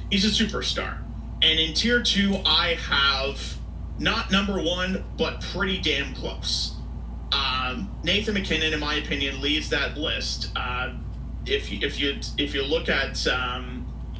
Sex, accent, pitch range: male, American, 125-170 Hz